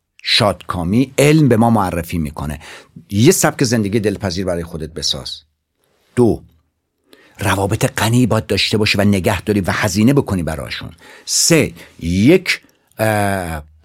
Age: 60-79